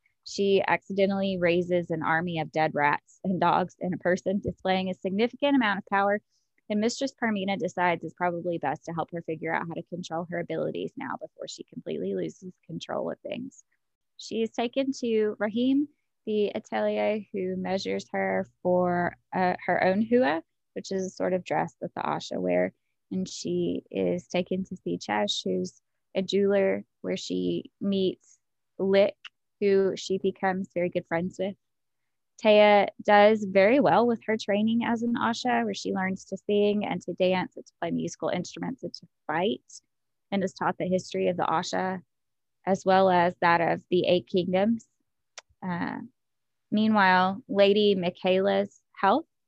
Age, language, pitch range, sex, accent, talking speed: 20-39, English, 175-205 Hz, female, American, 165 wpm